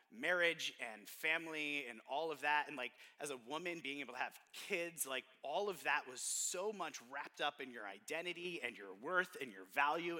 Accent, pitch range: American, 135-180 Hz